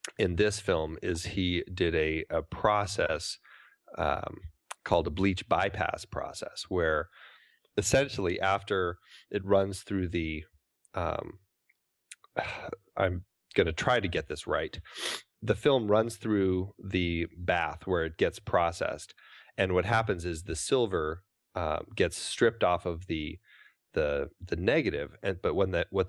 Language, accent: English, American